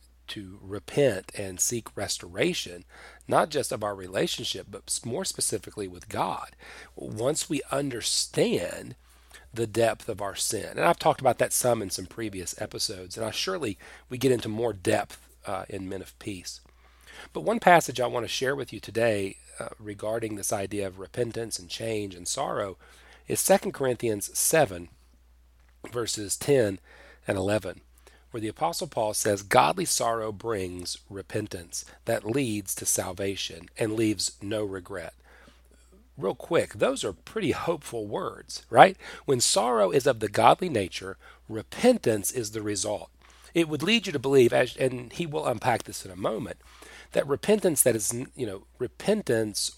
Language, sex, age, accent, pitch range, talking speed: English, male, 40-59, American, 95-120 Hz, 160 wpm